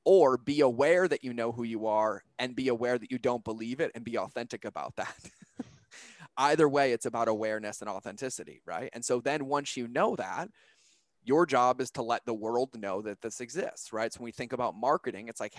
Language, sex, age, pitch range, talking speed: English, male, 20-39, 115-140 Hz, 220 wpm